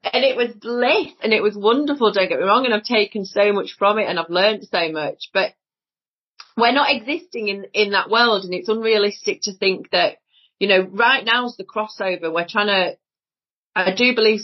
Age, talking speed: 30-49, 210 wpm